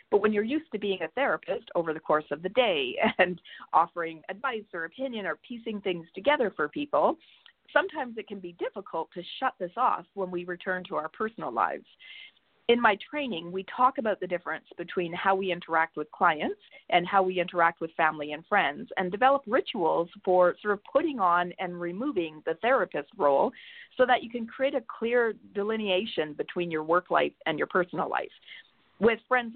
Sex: female